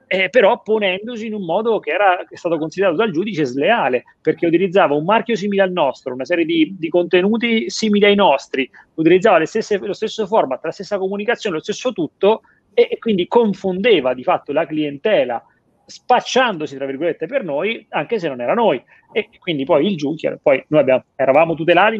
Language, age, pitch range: Italian, 30-49, 145-215 Hz